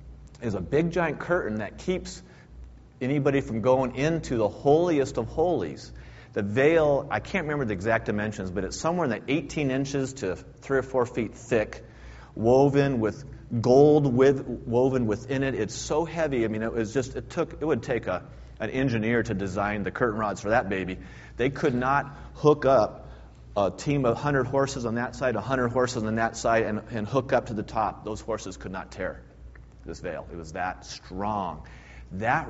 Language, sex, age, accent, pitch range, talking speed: English, male, 40-59, American, 85-130 Hz, 185 wpm